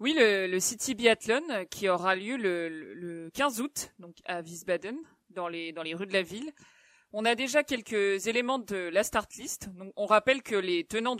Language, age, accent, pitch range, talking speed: French, 40-59, French, 195-245 Hz, 210 wpm